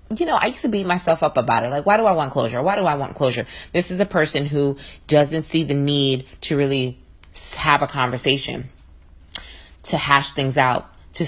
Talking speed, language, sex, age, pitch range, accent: 215 wpm, English, female, 20-39, 125-155 Hz, American